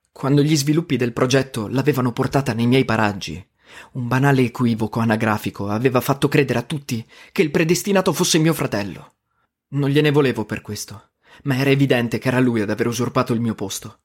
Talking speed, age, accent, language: 180 wpm, 30-49, native, Italian